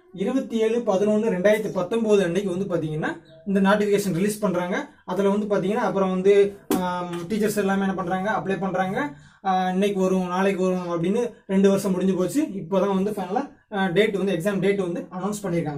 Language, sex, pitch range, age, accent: Tamil, male, 180-220 Hz, 20-39, native